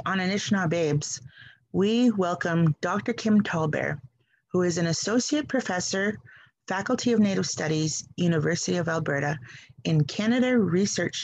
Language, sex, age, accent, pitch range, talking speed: English, female, 30-49, American, 145-200 Hz, 115 wpm